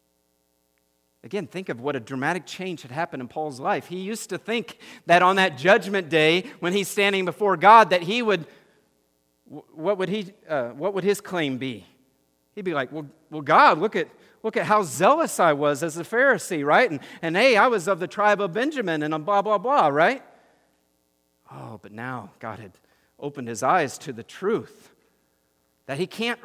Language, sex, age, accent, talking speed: English, male, 50-69, American, 195 wpm